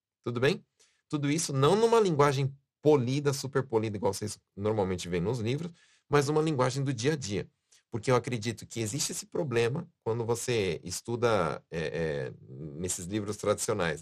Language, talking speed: Portuguese, 155 wpm